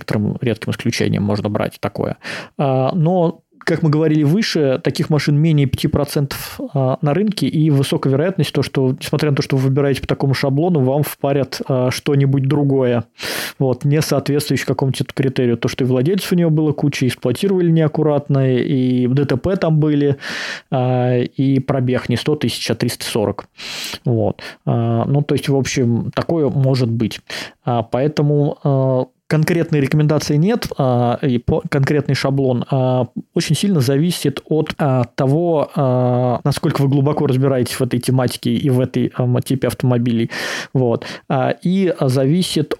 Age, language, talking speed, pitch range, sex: 20-39, Russian, 135 wpm, 125-150 Hz, male